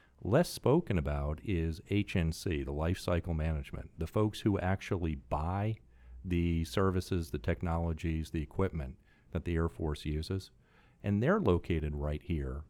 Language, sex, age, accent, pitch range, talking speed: English, male, 40-59, American, 80-95 Hz, 140 wpm